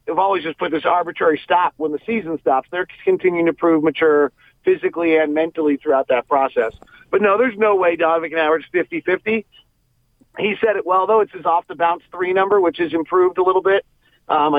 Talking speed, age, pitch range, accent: 210 wpm, 40-59, 160-195 Hz, American